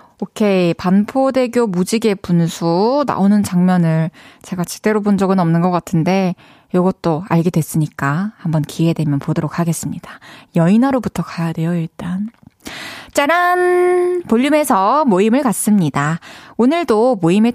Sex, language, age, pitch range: female, Korean, 20-39, 170-265 Hz